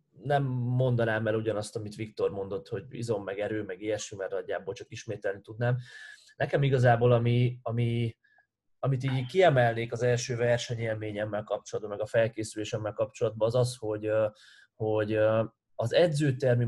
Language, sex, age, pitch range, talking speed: Hungarian, male, 20-39, 110-130 Hz, 140 wpm